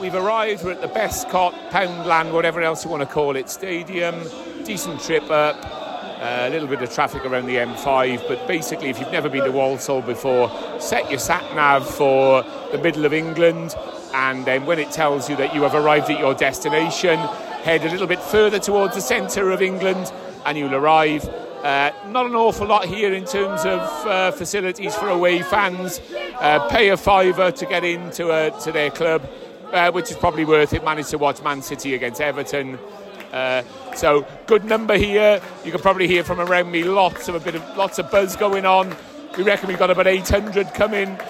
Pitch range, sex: 150-200 Hz, male